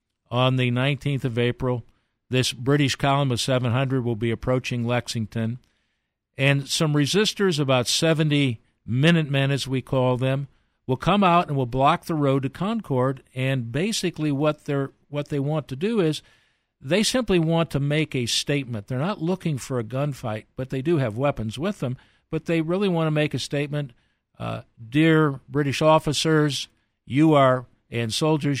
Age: 50-69